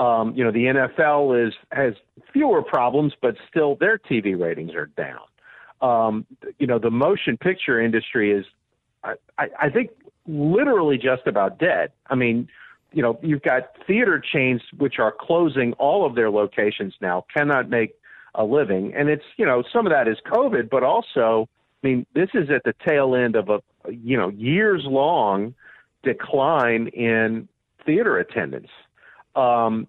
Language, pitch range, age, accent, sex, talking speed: English, 120-165 Hz, 50-69, American, male, 165 wpm